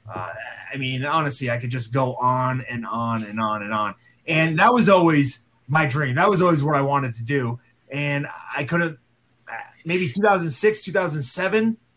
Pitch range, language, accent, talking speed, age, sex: 125-155 Hz, English, American, 180 wpm, 30-49, male